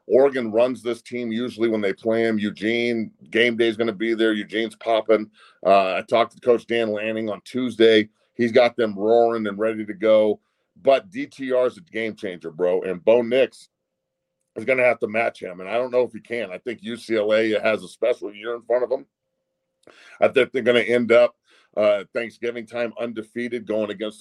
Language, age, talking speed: English, 40-59, 210 wpm